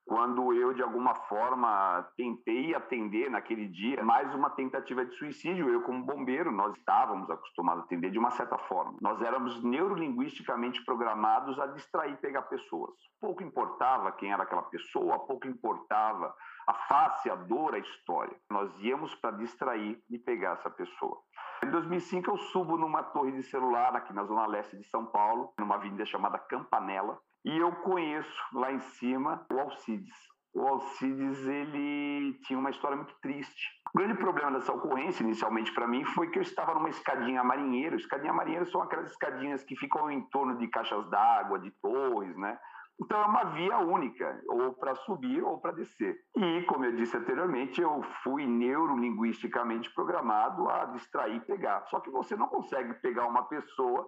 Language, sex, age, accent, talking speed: Portuguese, male, 50-69, Brazilian, 170 wpm